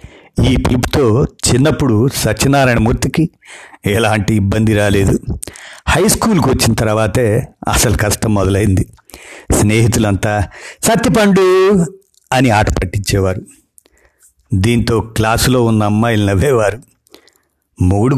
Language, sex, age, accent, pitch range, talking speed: Telugu, male, 50-69, native, 105-130 Hz, 85 wpm